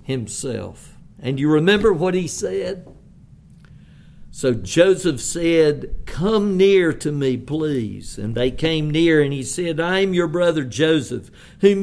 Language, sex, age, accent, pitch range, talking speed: English, male, 50-69, American, 125-170 Hz, 140 wpm